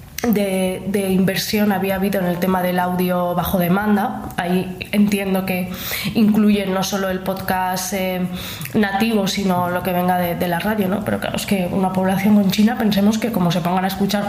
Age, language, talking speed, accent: 20-39, Spanish, 195 wpm, Spanish